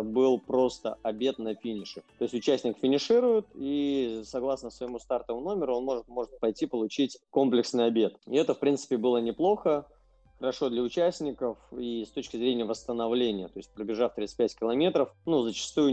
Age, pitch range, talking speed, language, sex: 20-39, 105-125 Hz, 160 wpm, Russian, male